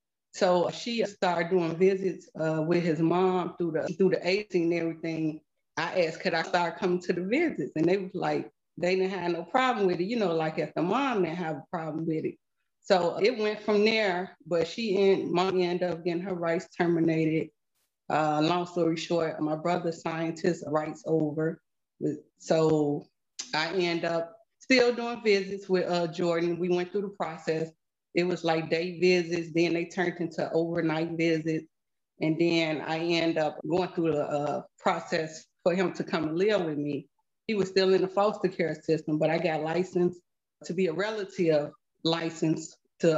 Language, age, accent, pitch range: English, 30-49, American, 160-185 Hz